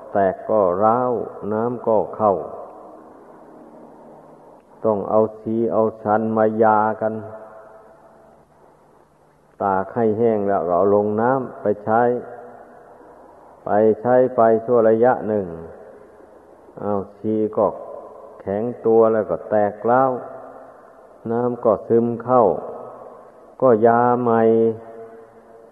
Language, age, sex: Thai, 50-69, male